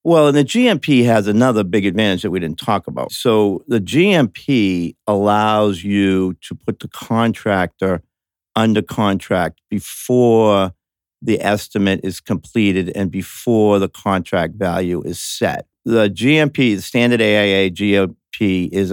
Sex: male